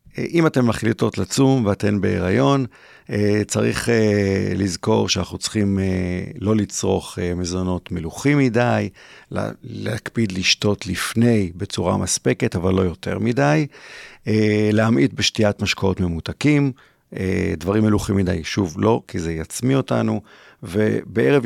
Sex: male